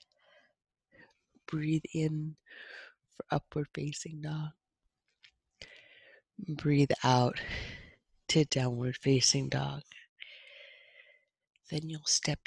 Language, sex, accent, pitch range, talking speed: English, female, American, 140-190 Hz, 70 wpm